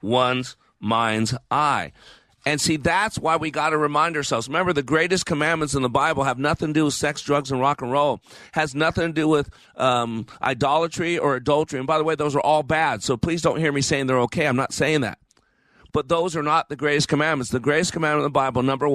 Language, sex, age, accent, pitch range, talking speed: English, male, 40-59, American, 115-150 Hz, 230 wpm